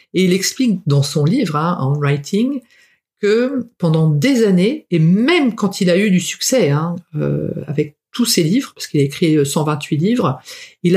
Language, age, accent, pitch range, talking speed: French, 50-69, French, 160-220 Hz, 185 wpm